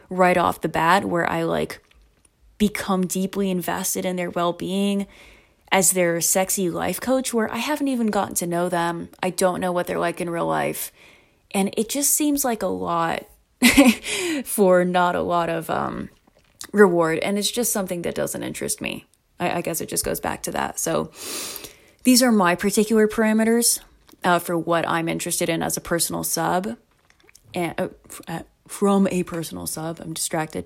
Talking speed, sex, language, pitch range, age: 180 wpm, female, English, 170-215 Hz, 20-39